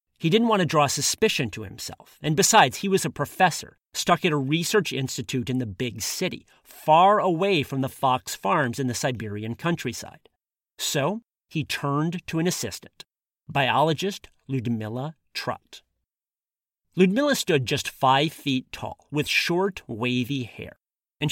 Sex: male